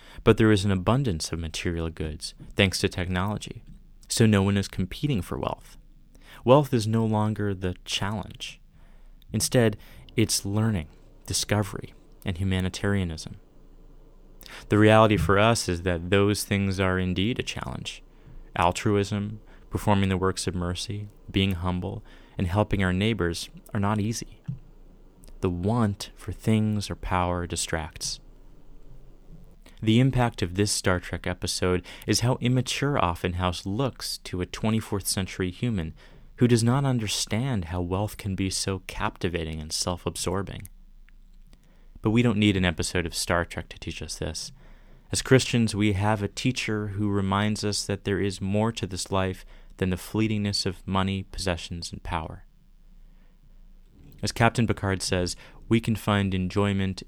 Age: 30-49